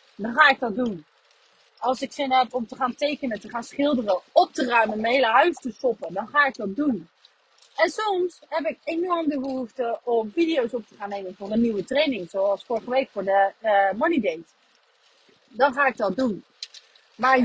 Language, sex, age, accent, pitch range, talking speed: Dutch, female, 30-49, Dutch, 230-310 Hz, 205 wpm